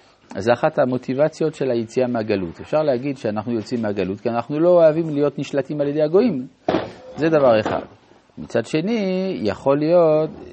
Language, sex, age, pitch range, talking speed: Hebrew, male, 50-69, 100-145 Hz, 160 wpm